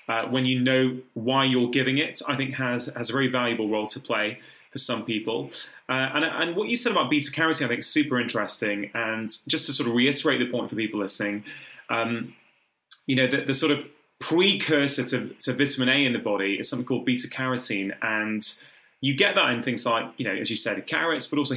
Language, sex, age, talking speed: English, male, 20-39, 225 wpm